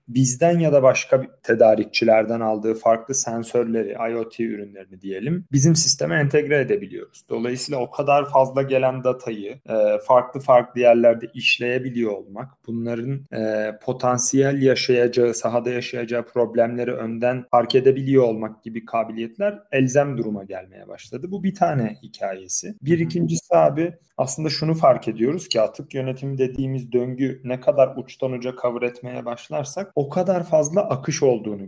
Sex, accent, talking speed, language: male, native, 130 wpm, Turkish